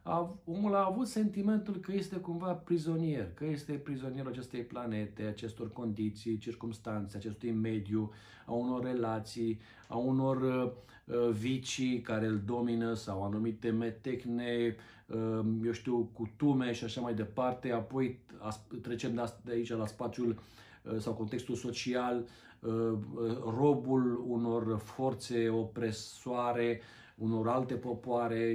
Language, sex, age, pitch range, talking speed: Romanian, male, 40-59, 110-130 Hz, 115 wpm